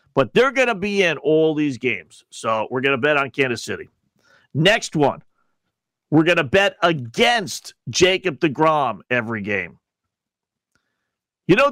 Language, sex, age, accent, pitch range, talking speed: English, male, 50-69, American, 140-195 Hz, 155 wpm